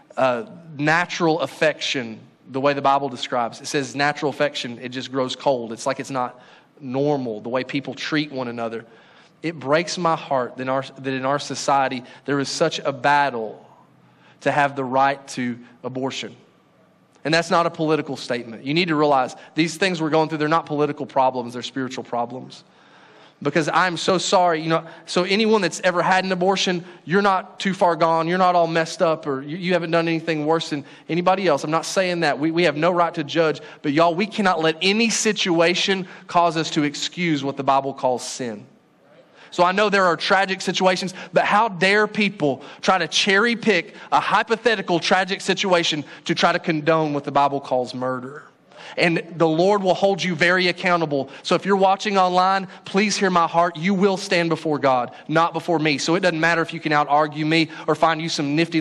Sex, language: male, English